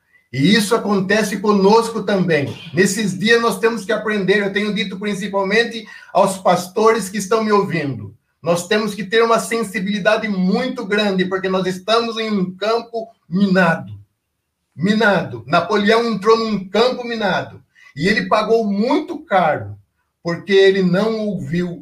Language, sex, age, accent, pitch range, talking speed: Portuguese, male, 60-79, Brazilian, 155-215 Hz, 140 wpm